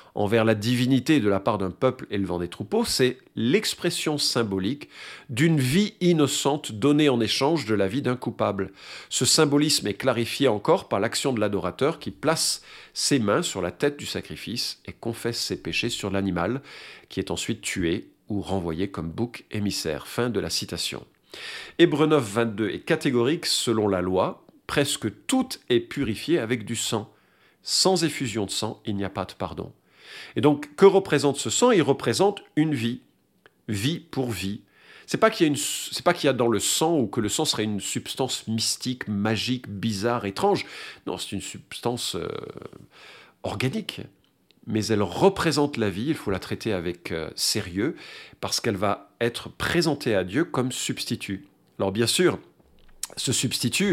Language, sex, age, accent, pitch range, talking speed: French, male, 50-69, French, 105-145 Hz, 170 wpm